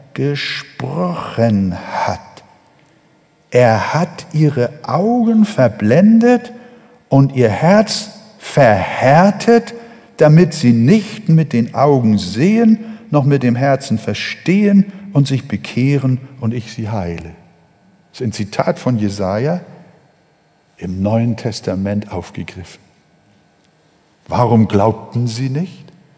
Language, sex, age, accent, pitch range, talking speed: German, male, 60-79, German, 120-195 Hz, 100 wpm